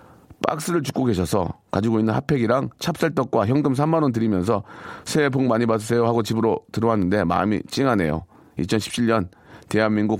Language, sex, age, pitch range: Korean, male, 40-59, 100-140 Hz